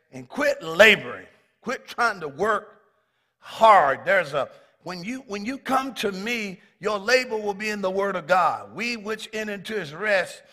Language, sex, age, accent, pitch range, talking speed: English, male, 50-69, American, 190-255 Hz, 180 wpm